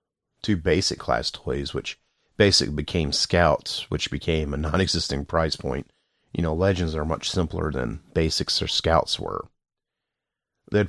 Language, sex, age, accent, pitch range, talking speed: English, male, 30-49, American, 80-95 Hz, 150 wpm